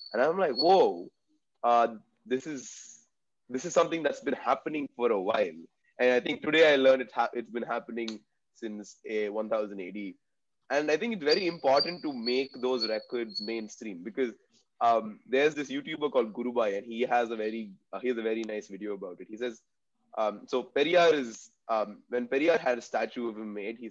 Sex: male